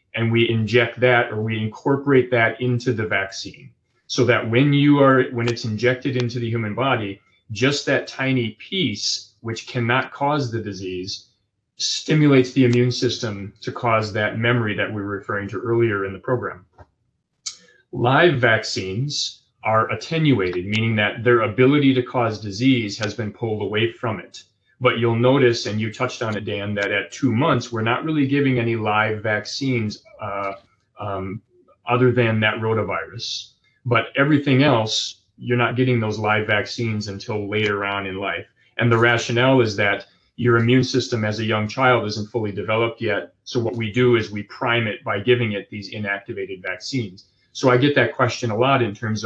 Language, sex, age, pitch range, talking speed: English, male, 30-49, 105-125 Hz, 175 wpm